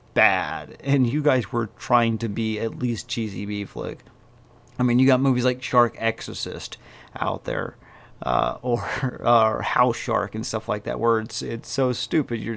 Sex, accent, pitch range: male, American, 110-125 Hz